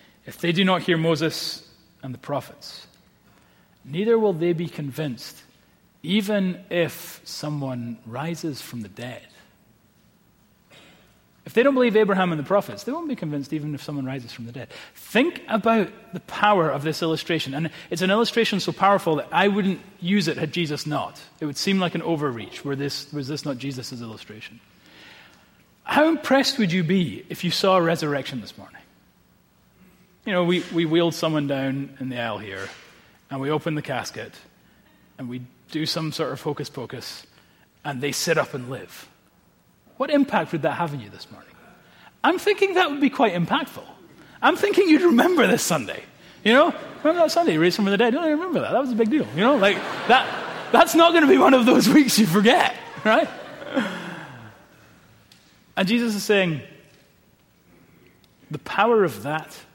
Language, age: English, 30-49